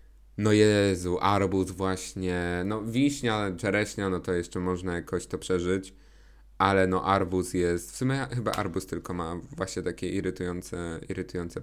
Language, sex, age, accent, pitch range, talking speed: Polish, male, 20-39, native, 90-115 Hz, 145 wpm